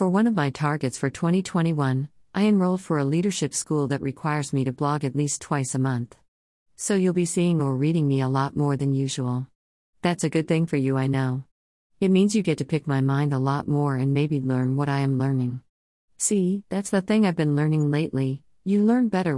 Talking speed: 225 wpm